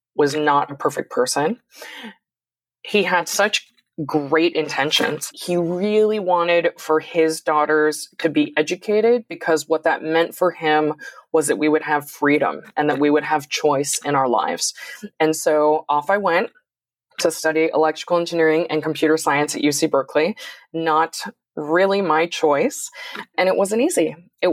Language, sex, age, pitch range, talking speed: English, female, 20-39, 150-180 Hz, 155 wpm